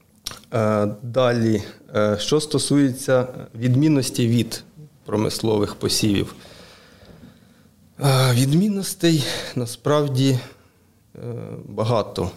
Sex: male